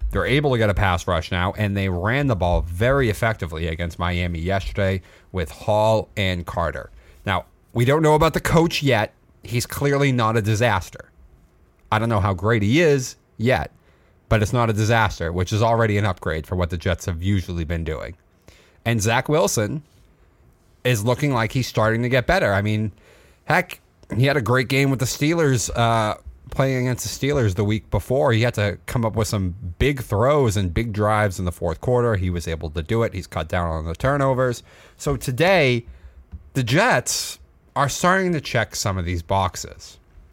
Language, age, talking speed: English, 30-49, 195 wpm